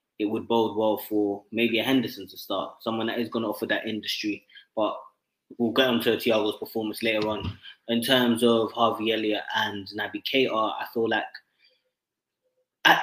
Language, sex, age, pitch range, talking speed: English, male, 20-39, 110-130 Hz, 180 wpm